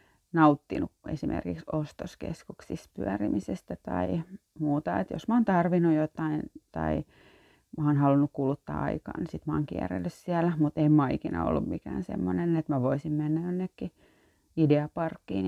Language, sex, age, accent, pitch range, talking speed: Finnish, female, 30-49, native, 135-170 Hz, 140 wpm